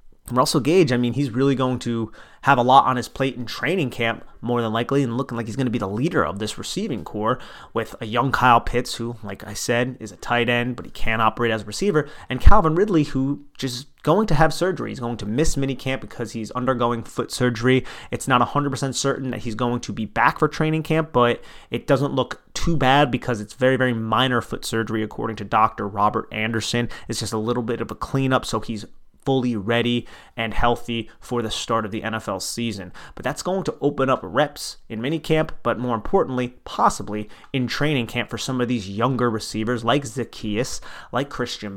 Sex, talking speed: male, 215 wpm